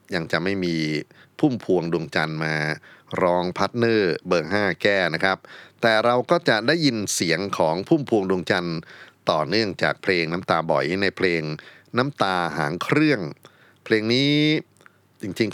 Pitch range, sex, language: 75-95 Hz, male, Thai